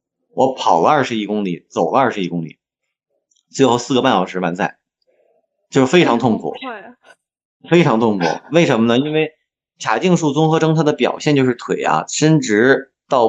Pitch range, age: 110-145 Hz, 30-49